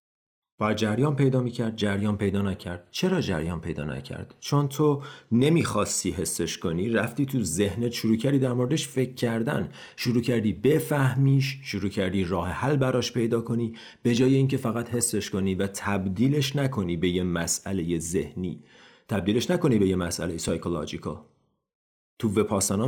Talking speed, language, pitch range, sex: 145 wpm, Persian, 100-140 Hz, male